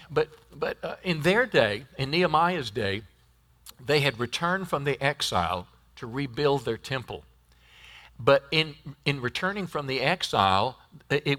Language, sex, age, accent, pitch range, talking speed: English, male, 50-69, American, 110-160 Hz, 140 wpm